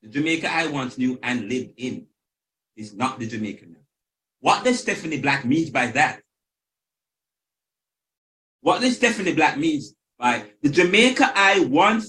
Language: English